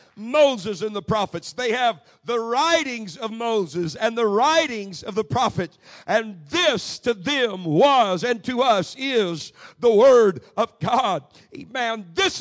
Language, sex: English, male